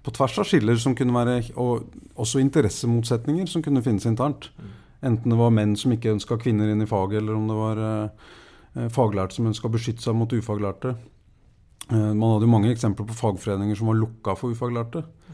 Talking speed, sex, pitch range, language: 185 wpm, male, 105-125 Hz, English